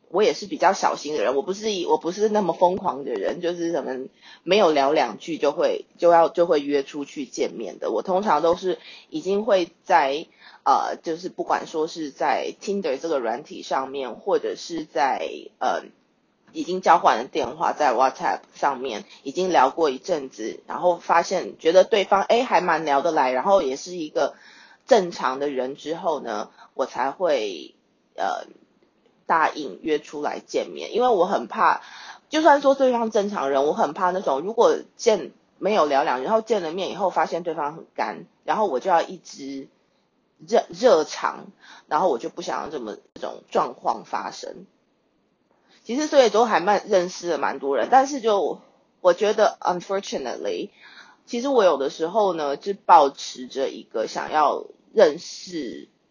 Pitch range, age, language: 160-265 Hz, 20-39, English